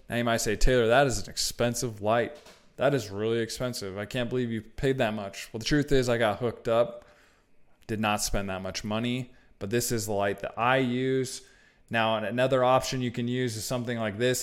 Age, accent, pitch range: 20-39, American, 110-125 Hz